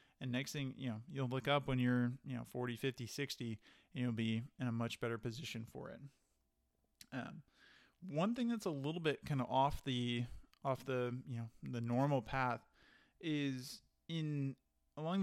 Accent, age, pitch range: American, 20-39, 120-140 Hz